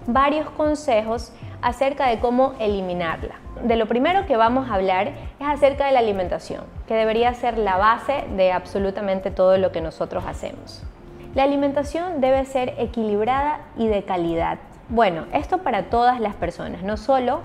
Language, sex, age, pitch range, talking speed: Spanish, female, 30-49, 195-255 Hz, 160 wpm